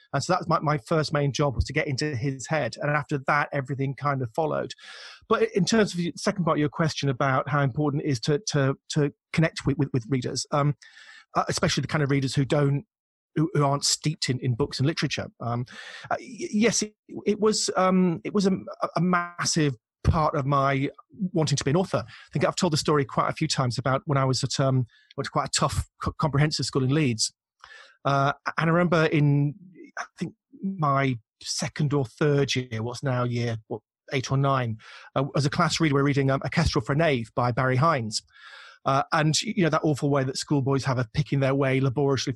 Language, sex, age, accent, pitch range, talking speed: English, male, 30-49, British, 135-170 Hz, 220 wpm